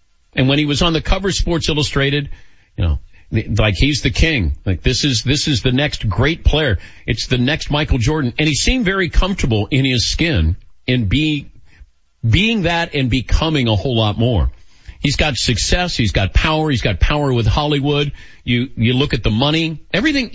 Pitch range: 95-135 Hz